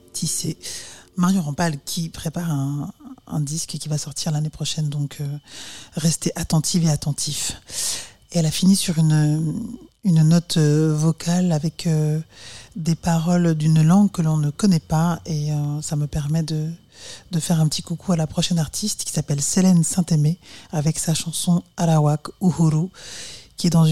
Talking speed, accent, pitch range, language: 165 wpm, French, 155-170 Hz, French